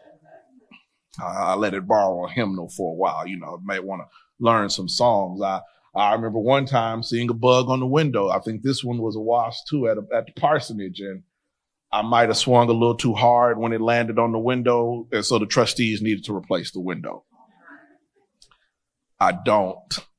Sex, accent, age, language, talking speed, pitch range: male, American, 30-49, English, 200 wpm, 95-125 Hz